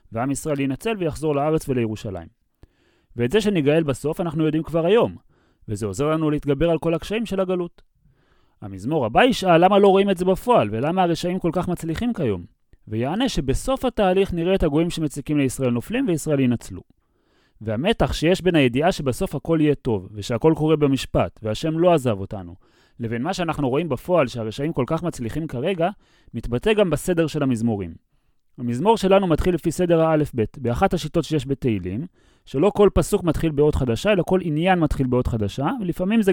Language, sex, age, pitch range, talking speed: Hebrew, male, 30-49, 120-180 Hz, 165 wpm